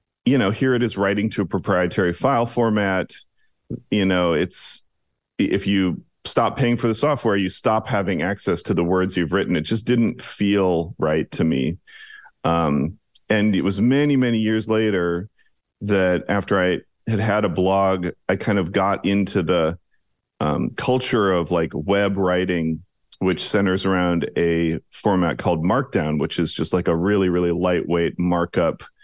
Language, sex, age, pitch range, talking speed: English, male, 40-59, 85-110 Hz, 165 wpm